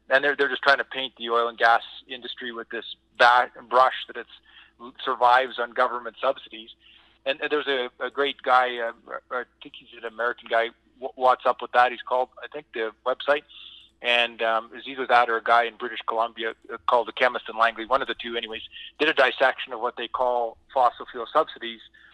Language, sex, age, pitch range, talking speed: English, male, 30-49, 115-130 Hz, 215 wpm